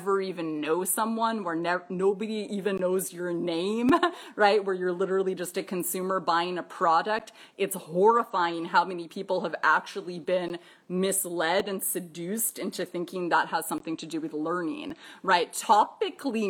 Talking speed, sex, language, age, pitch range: 150 wpm, female, English, 30-49, 175-210 Hz